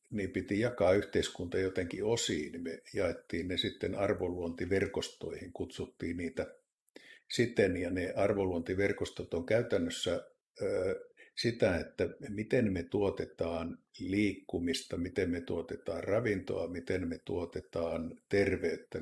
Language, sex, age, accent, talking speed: Finnish, male, 50-69, native, 105 wpm